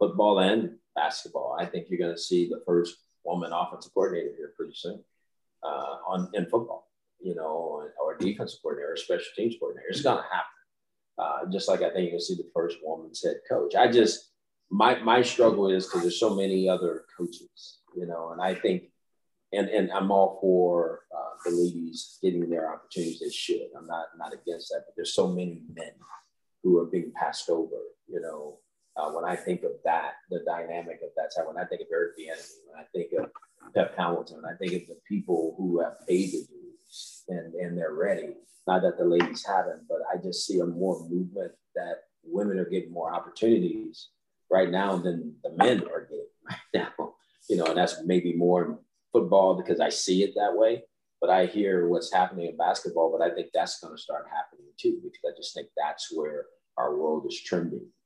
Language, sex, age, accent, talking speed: English, male, 30-49, American, 205 wpm